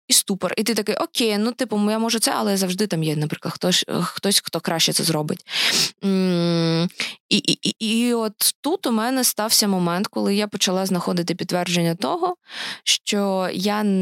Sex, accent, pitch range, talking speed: female, native, 170-220 Hz, 165 wpm